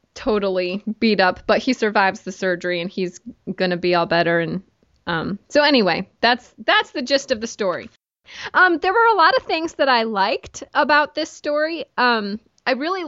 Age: 20-39